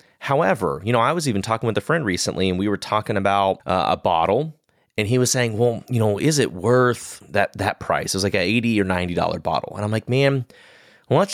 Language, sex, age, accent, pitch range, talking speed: English, male, 30-49, American, 90-115 Hz, 245 wpm